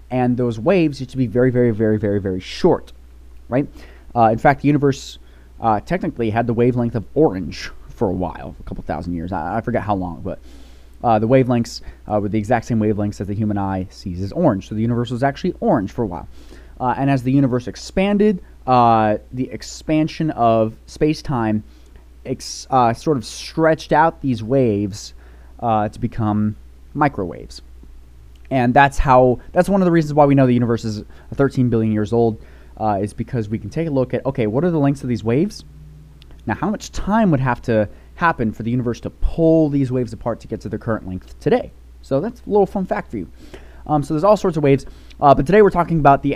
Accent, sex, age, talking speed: American, male, 20-39, 210 wpm